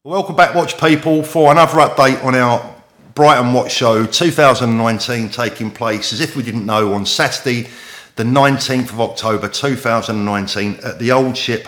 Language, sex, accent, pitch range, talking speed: English, male, British, 105-130 Hz, 160 wpm